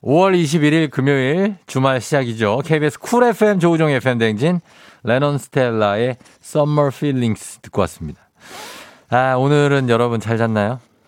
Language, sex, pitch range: Korean, male, 100-140 Hz